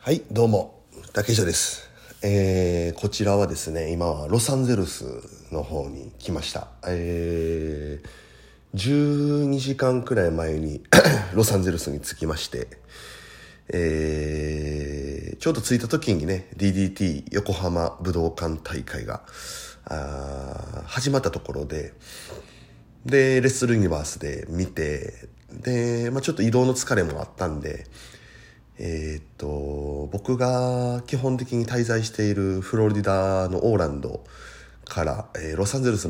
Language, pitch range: Japanese, 80-115 Hz